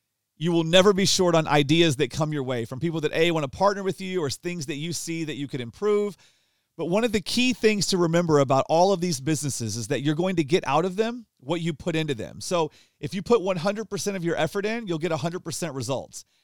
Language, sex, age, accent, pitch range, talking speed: English, male, 40-59, American, 140-185 Hz, 250 wpm